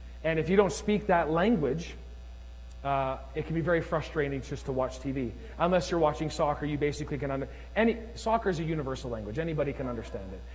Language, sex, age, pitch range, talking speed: English, male, 30-49, 150-210 Hz, 195 wpm